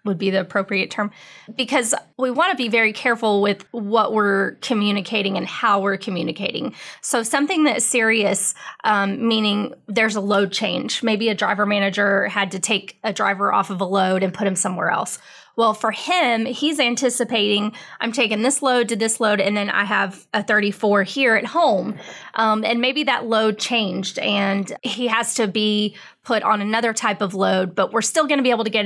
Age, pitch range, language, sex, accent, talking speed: 20-39, 200-235 Hz, English, female, American, 200 wpm